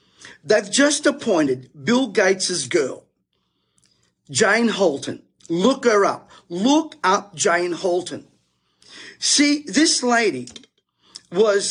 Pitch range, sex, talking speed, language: 195-270 Hz, male, 95 wpm, English